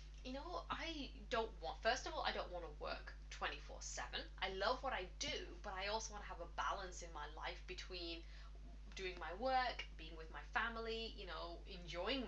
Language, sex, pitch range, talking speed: English, female, 170-205 Hz, 205 wpm